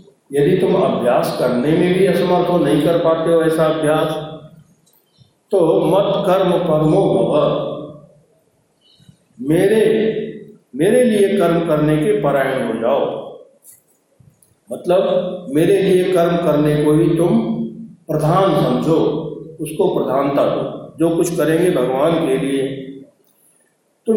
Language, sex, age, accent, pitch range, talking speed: Hindi, male, 50-69, native, 155-195 Hz, 120 wpm